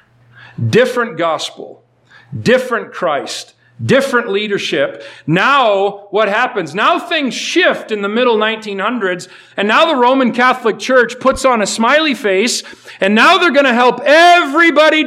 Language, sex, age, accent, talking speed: English, male, 50-69, American, 135 wpm